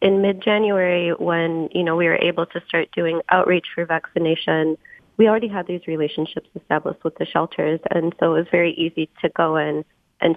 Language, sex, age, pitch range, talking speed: English, female, 20-39, 165-190 Hz, 190 wpm